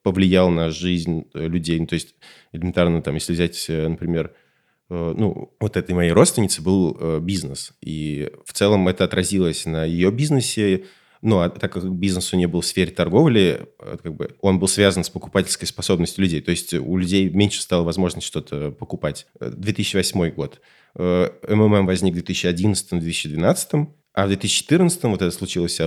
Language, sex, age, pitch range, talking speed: Russian, male, 20-39, 90-105 Hz, 160 wpm